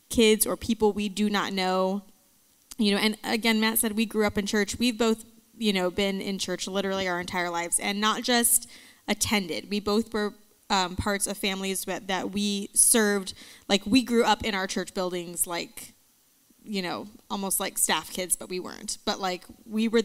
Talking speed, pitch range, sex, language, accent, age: 200 wpm, 195-230 Hz, female, English, American, 20-39